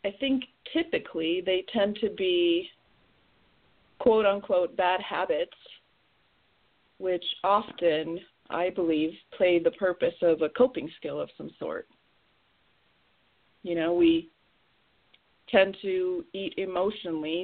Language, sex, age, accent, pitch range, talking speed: English, female, 40-59, American, 165-210 Hz, 110 wpm